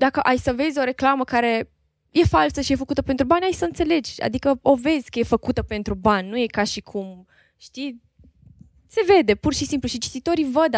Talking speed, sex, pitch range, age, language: 215 wpm, female, 230-285 Hz, 20-39, Romanian